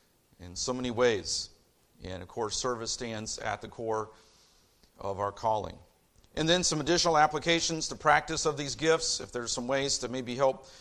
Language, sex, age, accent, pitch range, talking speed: English, male, 40-59, American, 105-140 Hz, 180 wpm